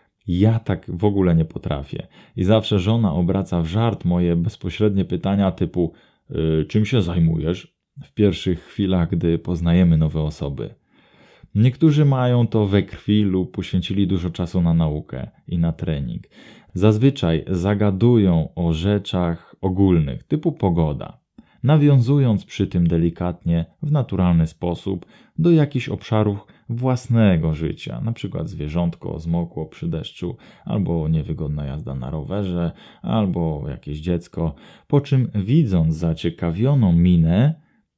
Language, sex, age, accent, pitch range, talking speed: Polish, male, 20-39, native, 85-110 Hz, 120 wpm